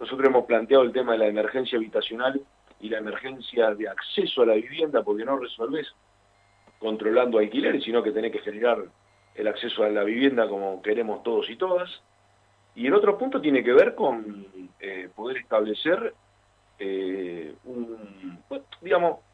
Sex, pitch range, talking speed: male, 105-170 Hz, 160 wpm